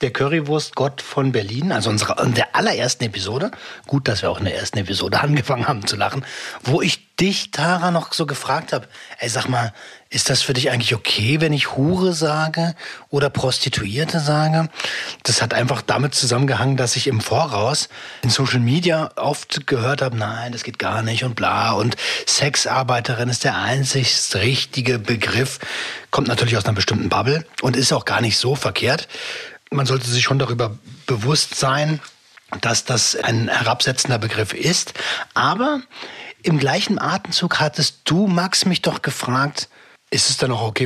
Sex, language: male, German